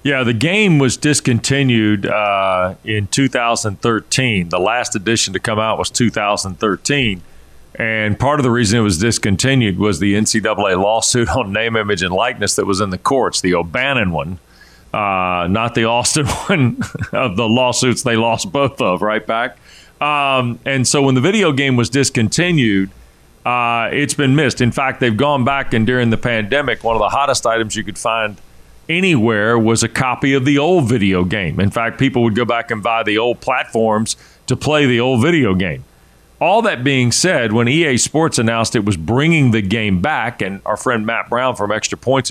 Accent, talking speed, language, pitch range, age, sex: American, 190 wpm, English, 105-130 Hz, 40-59, male